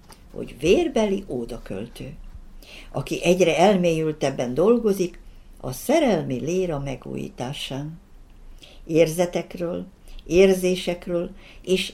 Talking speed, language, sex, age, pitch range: 70 wpm, Hungarian, female, 60-79, 155-235 Hz